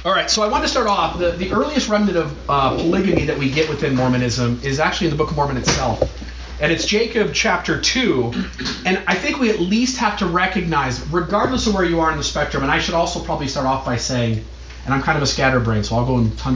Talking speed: 250 wpm